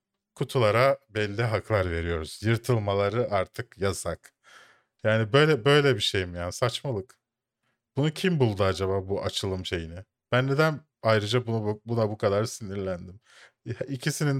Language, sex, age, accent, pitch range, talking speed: Turkish, male, 40-59, native, 95-125 Hz, 135 wpm